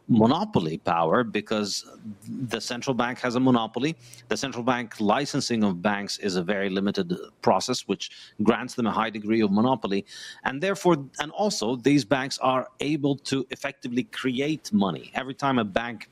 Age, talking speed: 40-59, 165 wpm